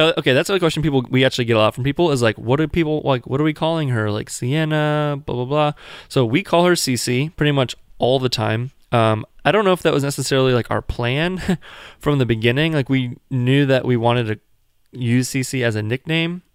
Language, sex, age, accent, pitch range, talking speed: English, male, 20-39, American, 115-145 Hz, 230 wpm